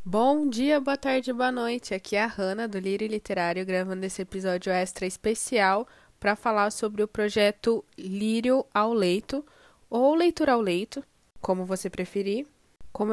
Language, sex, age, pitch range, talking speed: Portuguese, female, 10-29, 195-245 Hz, 155 wpm